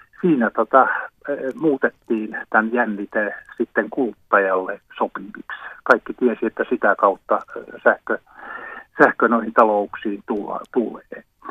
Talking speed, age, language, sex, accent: 90 wpm, 50-69, Finnish, male, native